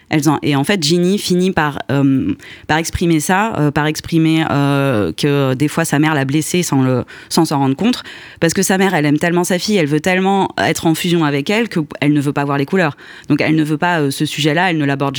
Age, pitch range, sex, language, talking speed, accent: 20-39, 140-165 Hz, female, French, 250 wpm, French